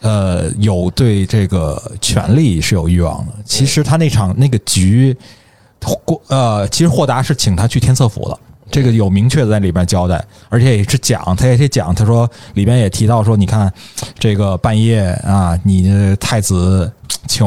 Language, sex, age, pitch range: Chinese, male, 20-39, 100-130 Hz